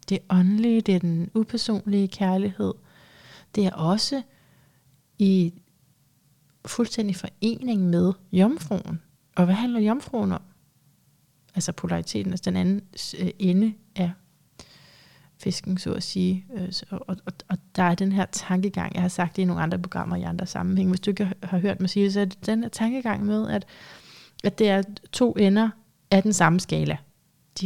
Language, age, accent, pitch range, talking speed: Danish, 30-49, native, 175-205 Hz, 165 wpm